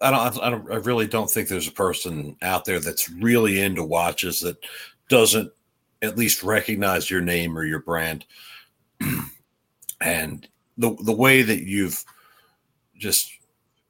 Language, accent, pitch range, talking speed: English, American, 90-120 Hz, 145 wpm